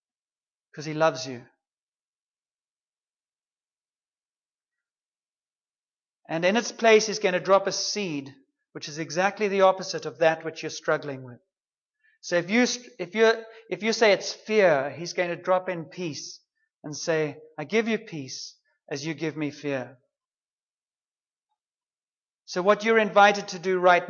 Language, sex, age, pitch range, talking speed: English, male, 30-49, 160-210 Hz, 145 wpm